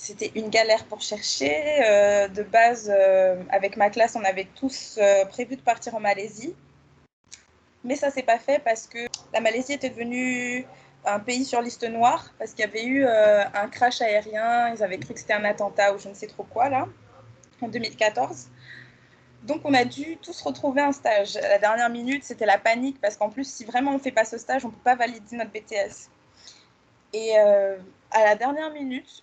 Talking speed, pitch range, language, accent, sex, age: 205 wpm, 210-265 Hz, French, French, female, 20-39